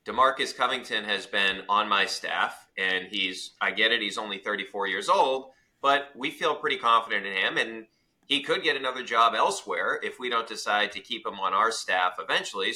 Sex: male